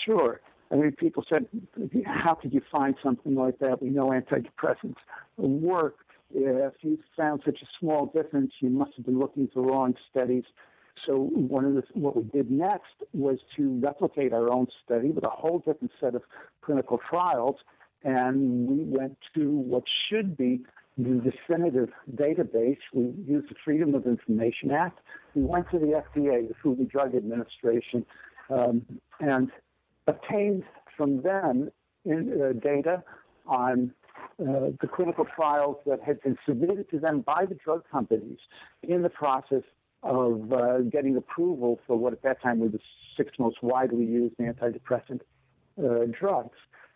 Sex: male